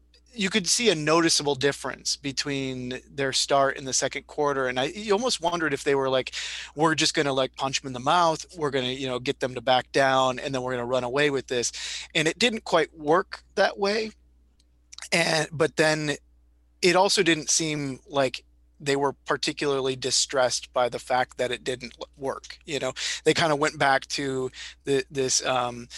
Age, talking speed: 30-49, 205 wpm